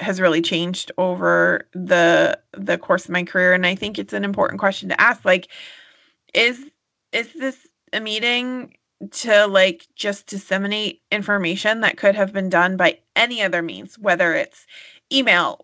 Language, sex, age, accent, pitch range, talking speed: English, female, 20-39, American, 180-225 Hz, 160 wpm